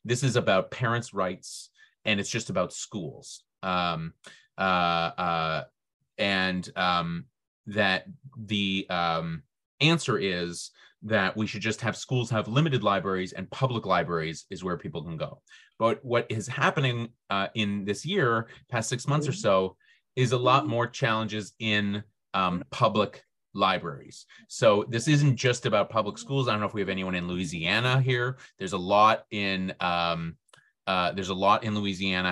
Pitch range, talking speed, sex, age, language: 95-120 Hz, 160 wpm, male, 30-49, English